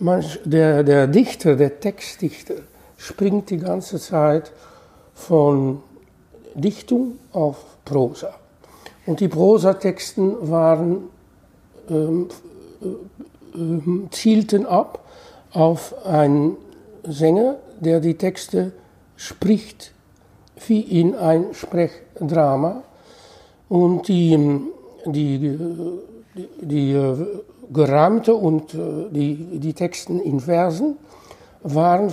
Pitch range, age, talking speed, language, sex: 150-190 Hz, 60-79, 80 wpm, German, male